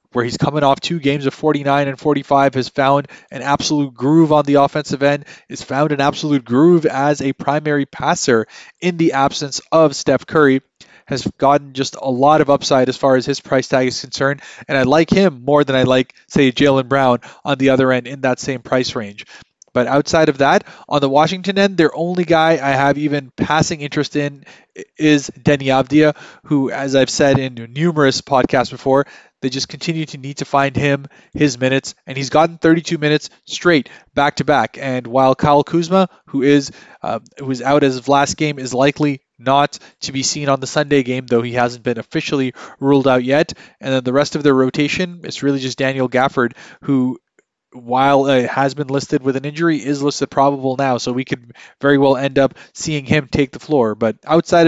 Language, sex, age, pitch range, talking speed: English, male, 20-39, 135-150 Hz, 205 wpm